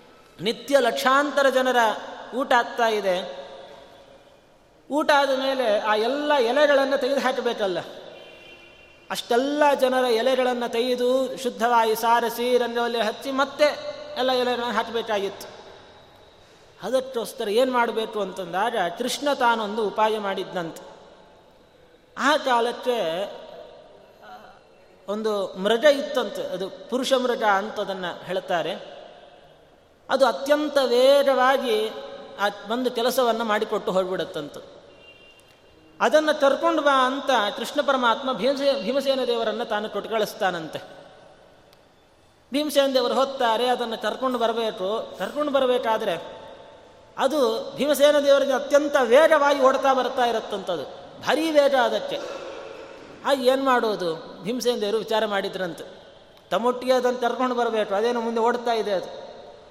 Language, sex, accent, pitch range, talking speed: Kannada, male, native, 215-270 Hz, 95 wpm